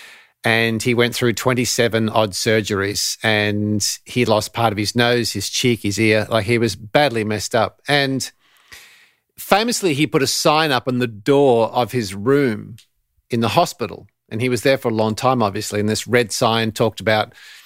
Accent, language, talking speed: Australian, English, 185 wpm